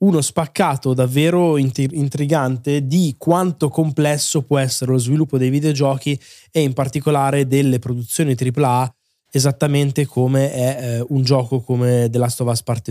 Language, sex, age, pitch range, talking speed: Italian, male, 20-39, 125-145 Hz, 145 wpm